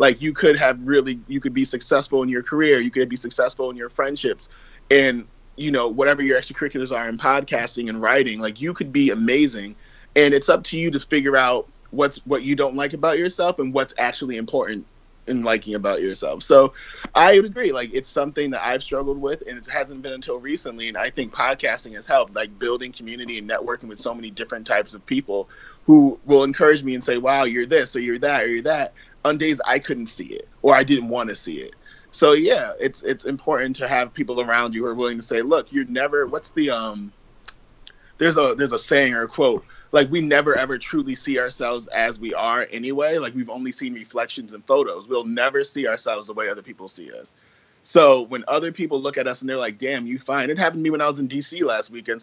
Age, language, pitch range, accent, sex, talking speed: 30-49, English, 120-160 Hz, American, male, 230 wpm